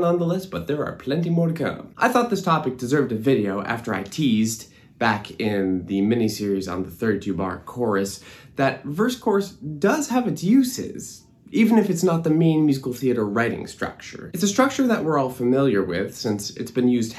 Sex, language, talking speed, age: male, English, 190 wpm, 20-39